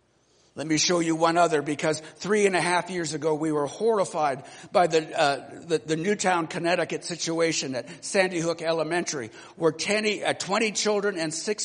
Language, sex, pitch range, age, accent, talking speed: English, male, 165-205 Hz, 60-79, American, 180 wpm